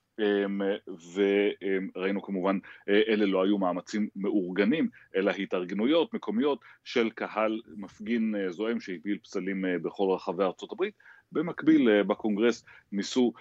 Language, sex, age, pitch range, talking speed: Hebrew, male, 30-49, 95-110 Hz, 100 wpm